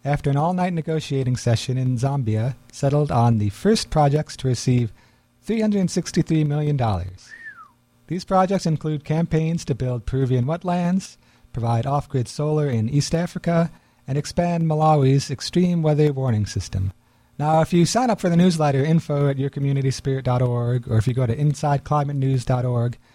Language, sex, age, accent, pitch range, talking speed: English, male, 40-59, American, 125-165 Hz, 140 wpm